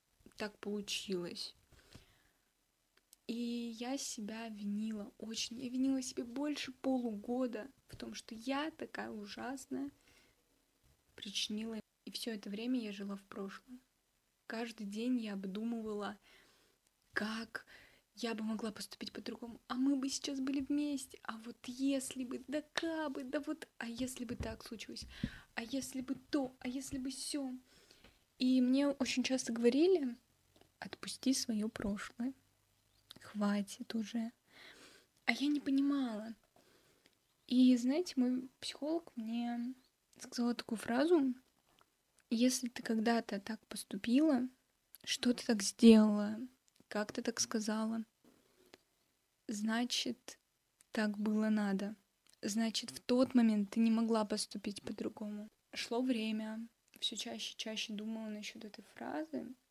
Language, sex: Russian, female